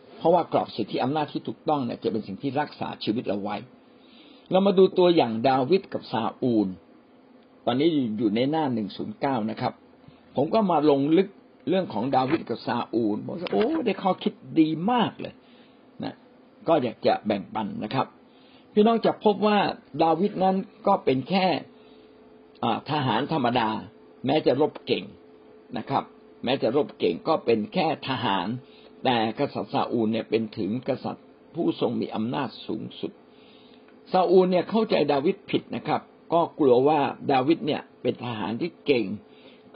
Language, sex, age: Thai, male, 60-79